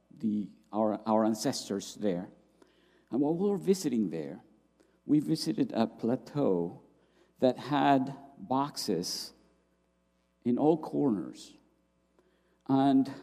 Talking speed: 100 wpm